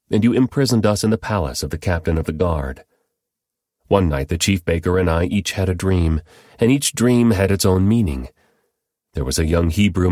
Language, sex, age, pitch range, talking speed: English, male, 40-59, 80-110 Hz, 215 wpm